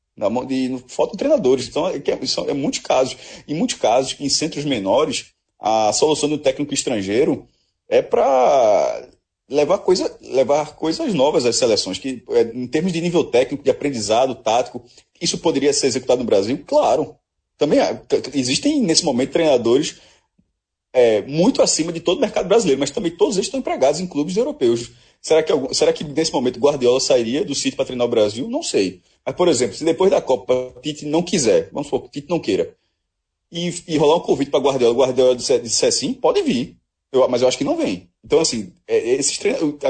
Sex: male